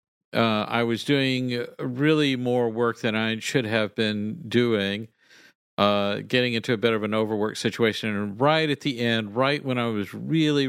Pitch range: 110-140 Hz